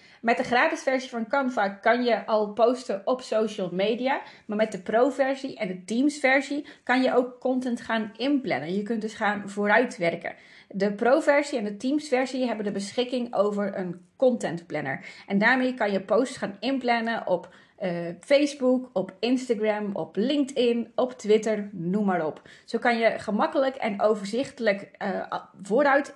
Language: Dutch